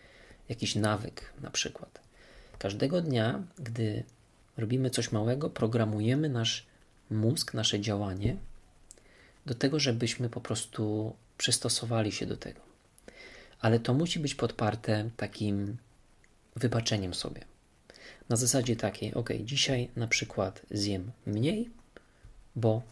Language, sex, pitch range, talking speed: Polish, male, 105-125 Hz, 110 wpm